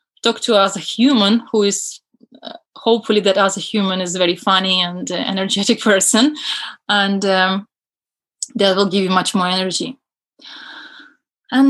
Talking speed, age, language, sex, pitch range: 160 wpm, 20-39, English, female, 190-240 Hz